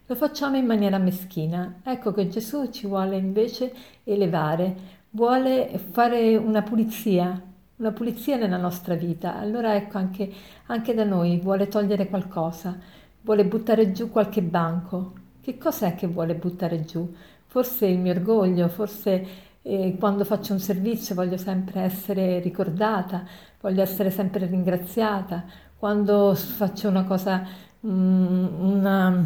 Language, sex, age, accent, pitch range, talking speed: Italian, female, 50-69, native, 185-220 Hz, 130 wpm